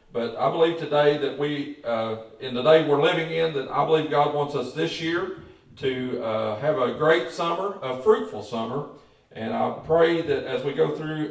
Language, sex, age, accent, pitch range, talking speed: English, male, 40-59, American, 125-195 Hz, 200 wpm